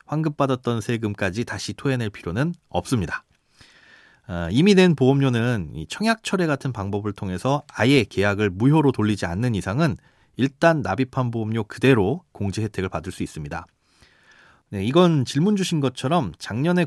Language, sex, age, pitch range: Korean, male, 30-49, 105-155 Hz